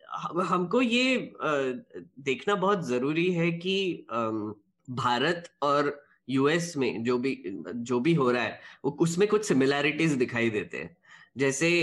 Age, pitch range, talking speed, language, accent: 10-29, 125-160 Hz, 130 wpm, Hindi, native